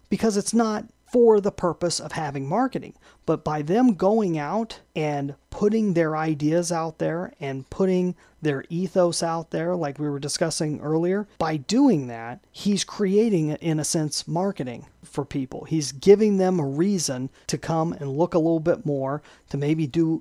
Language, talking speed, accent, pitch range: English, 170 wpm, American, 145-185 Hz